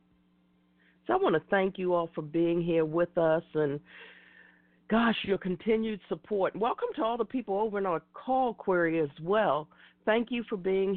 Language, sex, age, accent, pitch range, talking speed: English, female, 50-69, American, 150-190 Hz, 180 wpm